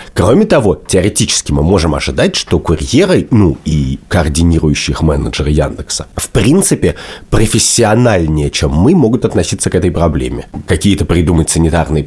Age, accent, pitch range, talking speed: 30-49, native, 75-90 Hz, 135 wpm